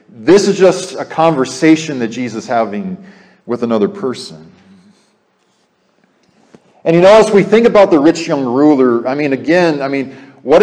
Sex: male